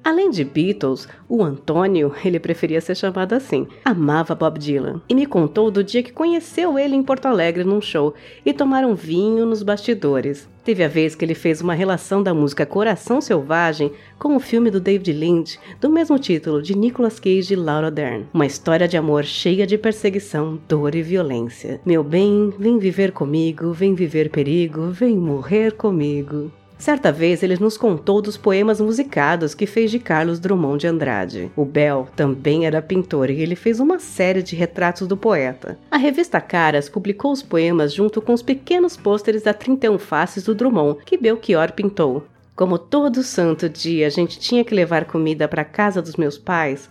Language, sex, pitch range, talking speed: Portuguese, female, 160-225 Hz, 185 wpm